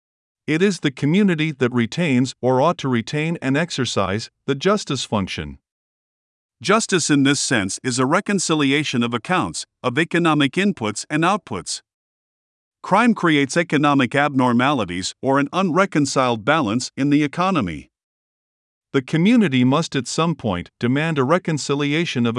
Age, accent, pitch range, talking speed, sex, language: 50-69, American, 120-160 Hz, 135 wpm, male, English